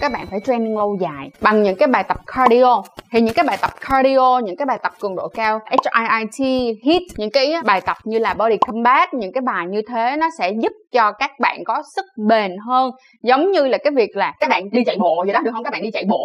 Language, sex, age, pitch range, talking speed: Vietnamese, female, 20-39, 220-275 Hz, 260 wpm